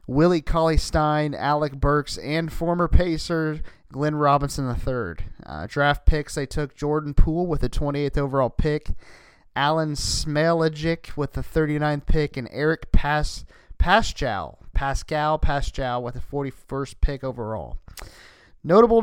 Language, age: English, 30-49